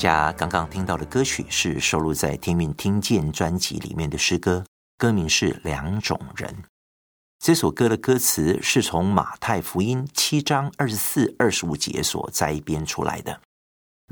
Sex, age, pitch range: male, 50-69, 75-115 Hz